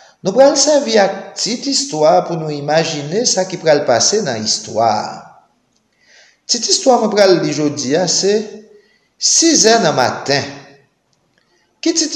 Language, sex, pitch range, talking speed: English, male, 155-260 Hz, 140 wpm